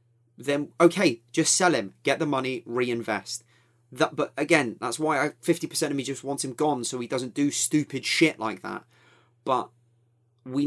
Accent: British